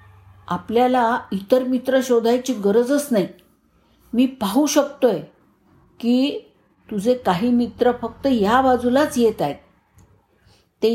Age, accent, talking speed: 50-69, native, 105 wpm